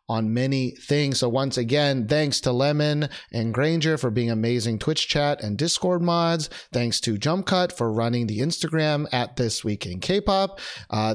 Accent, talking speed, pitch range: American, 180 wpm, 115-155 Hz